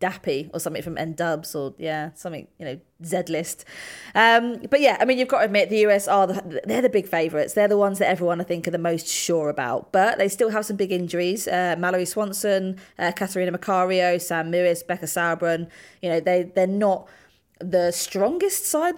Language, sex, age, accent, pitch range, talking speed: English, female, 20-39, British, 165-200 Hz, 210 wpm